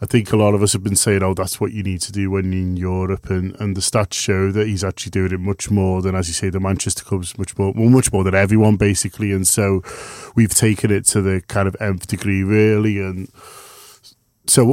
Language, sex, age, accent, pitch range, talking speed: English, male, 20-39, British, 100-115 Hz, 245 wpm